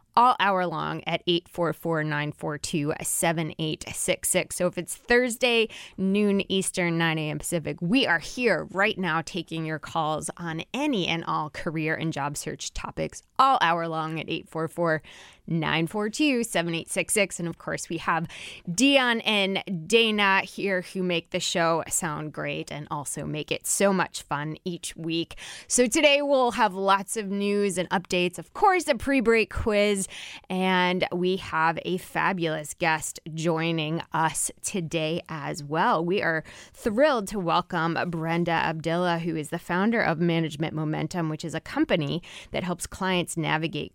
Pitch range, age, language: 160-200 Hz, 20-39, English